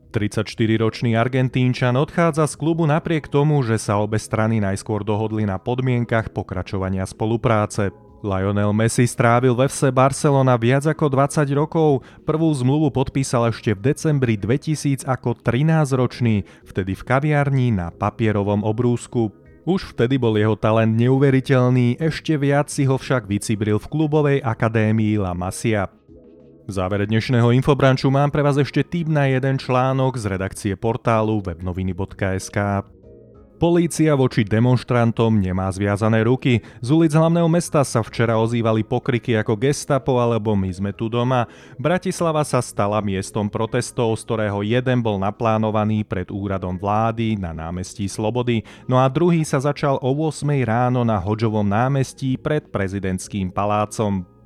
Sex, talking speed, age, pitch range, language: male, 140 wpm, 30-49, 105-135 Hz, Slovak